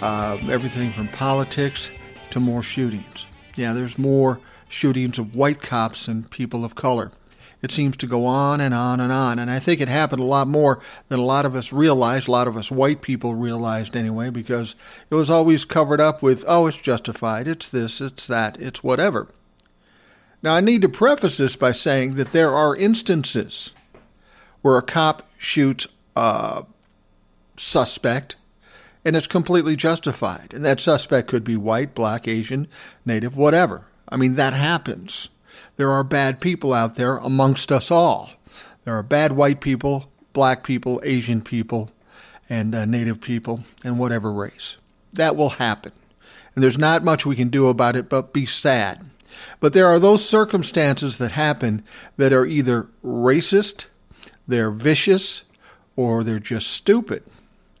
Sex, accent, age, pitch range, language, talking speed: male, American, 50-69, 115-145 Hz, English, 165 wpm